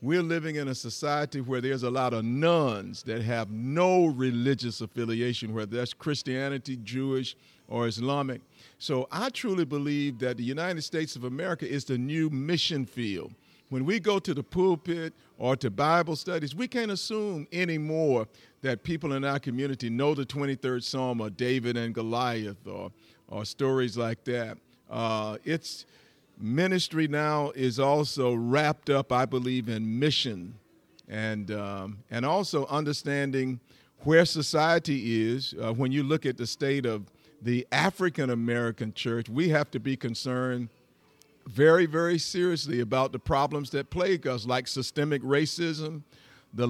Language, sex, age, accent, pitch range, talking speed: English, male, 50-69, American, 125-155 Hz, 150 wpm